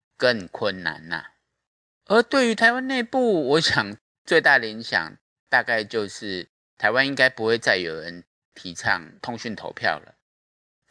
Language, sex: Chinese, male